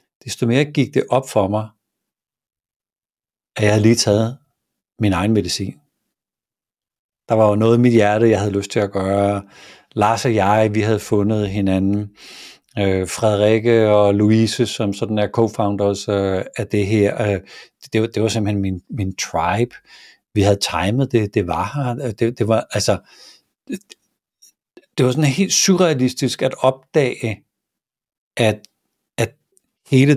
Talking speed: 155 wpm